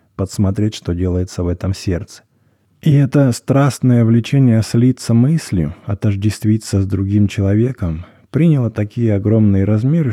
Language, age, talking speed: English, 20-39, 120 wpm